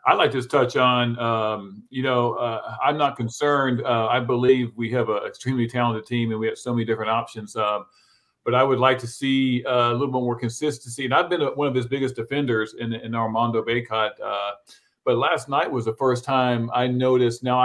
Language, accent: English, American